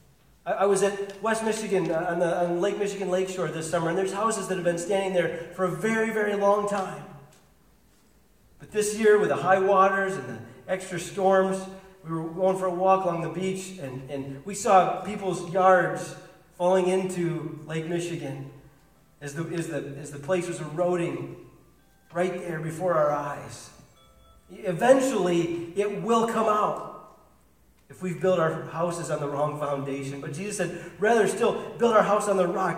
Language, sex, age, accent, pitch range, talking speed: English, male, 40-59, American, 140-190 Hz, 170 wpm